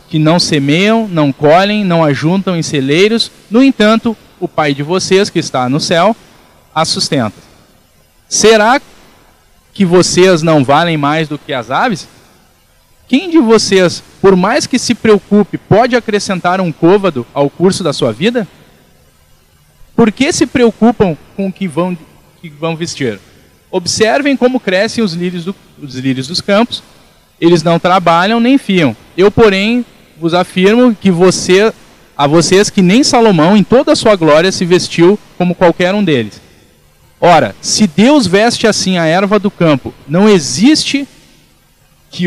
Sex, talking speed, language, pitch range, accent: male, 155 wpm, Portuguese, 155-215 Hz, Brazilian